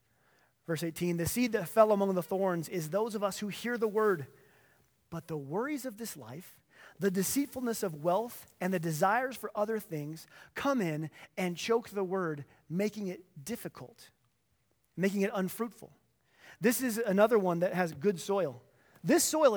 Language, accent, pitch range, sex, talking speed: English, American, 170-235 Hz, male, 170 wpm